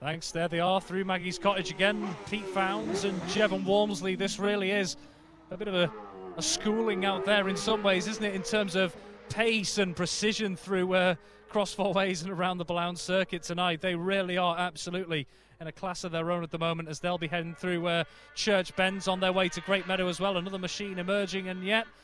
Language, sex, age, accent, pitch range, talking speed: English, male, 30-49, British, 185-230 Hz, 220 wpm